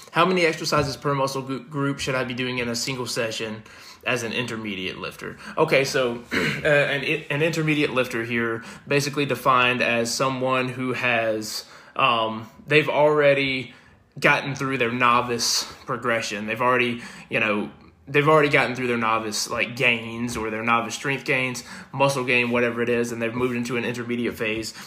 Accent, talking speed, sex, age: American, 165 wpm, male, 20-39